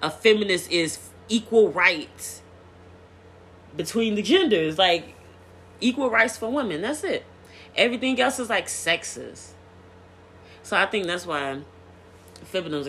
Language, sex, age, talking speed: English, female, 20-39, 120 wpm